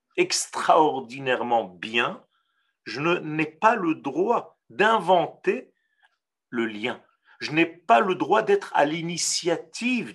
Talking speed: 110 wpm